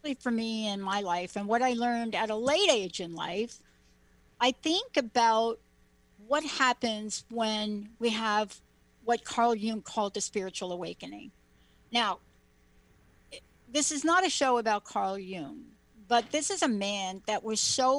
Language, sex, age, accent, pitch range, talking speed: English, female, 60-79, American, 200-255 Hz, 155 wpm